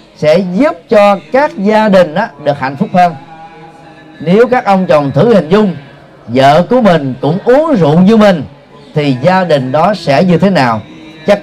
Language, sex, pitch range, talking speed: Vietnamese, male, 145-210 Hz, 185 wpm